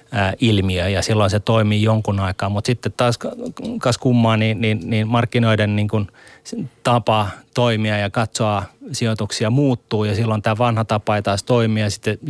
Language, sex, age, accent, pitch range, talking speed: Finnish, male, 30-49, native, 105-125 Hz, 160 wpm